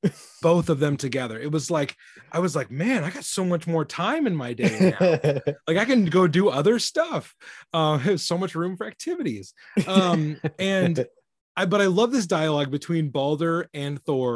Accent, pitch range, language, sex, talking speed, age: American, 140-185 Hz, English, male, 200 wpm, 20-39